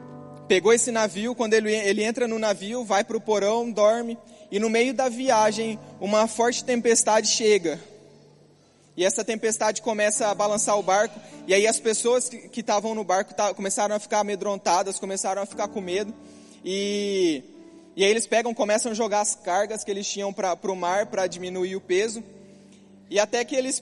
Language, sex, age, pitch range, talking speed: Portuguese, male, 20-39, 200-235 Hz, 185 wpm